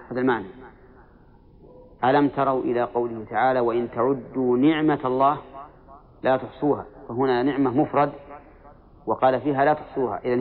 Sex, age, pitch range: male, 40-59, 125-145 Hz